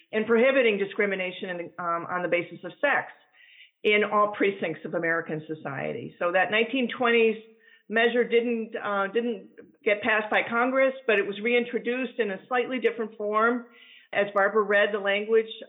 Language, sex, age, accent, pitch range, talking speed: English, female, 50-69, American, 195-260 Hz, 155 wpm